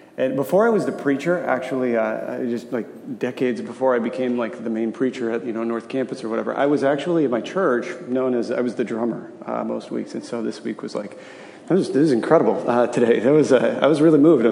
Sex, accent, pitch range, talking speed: male, American, 125-160 Hz, 245 wpm